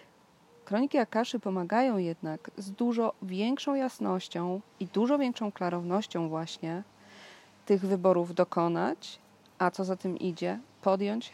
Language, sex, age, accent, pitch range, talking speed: Polish, female, 30-49, native, 175-220 Hz, 115 wpm